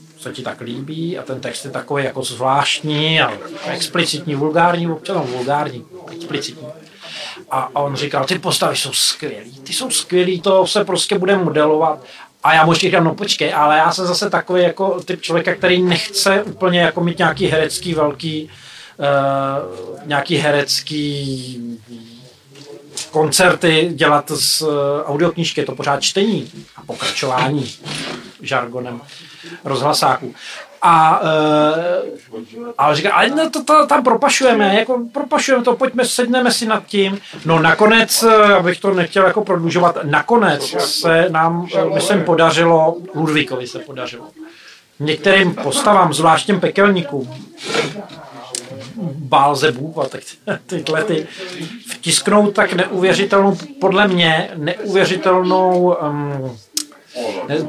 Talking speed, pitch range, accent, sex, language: 120 wpm, 150-195 Hz, native, male, Czech